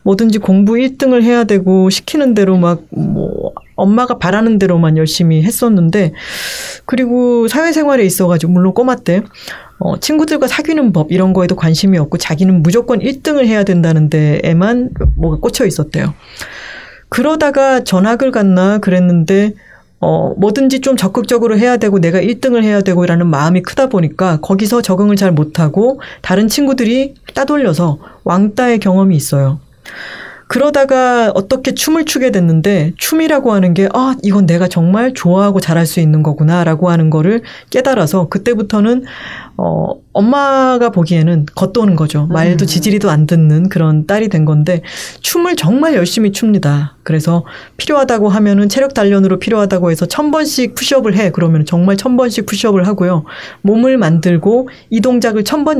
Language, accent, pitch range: Korean, native, 175-245 Hz